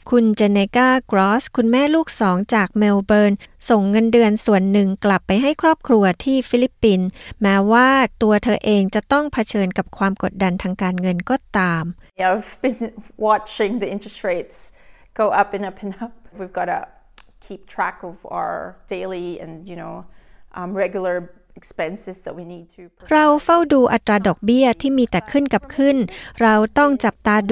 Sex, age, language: female, 30-49, Thai